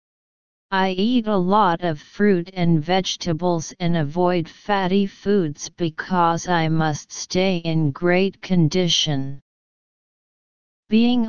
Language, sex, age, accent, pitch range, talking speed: English, female, 40-59, American, 160-195 Hz, 105 wpm